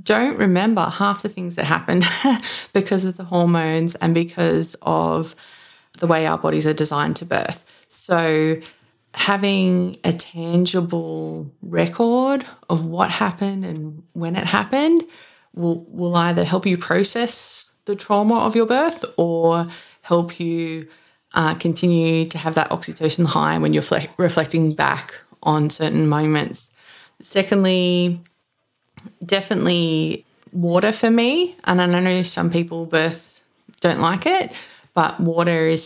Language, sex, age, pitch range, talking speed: English, female, 20-39, 160-205 Hz, 130 wpm